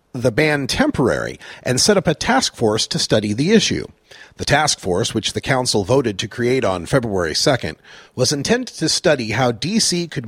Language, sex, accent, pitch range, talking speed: English, male, American, 110-155 Hz, 185 wpm